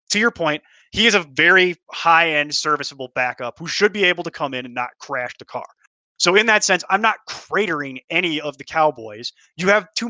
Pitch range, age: 135-175 Hz, 20-39